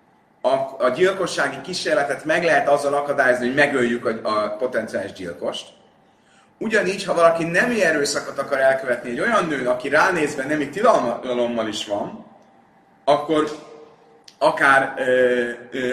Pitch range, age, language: 120-170 Hz, 30-49, Hungarian